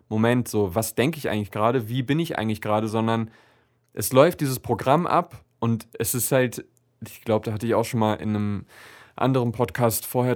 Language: German